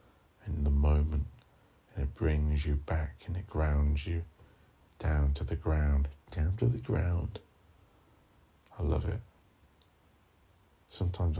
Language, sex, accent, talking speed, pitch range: English, male, British, 125 wpm, 75-95 Hz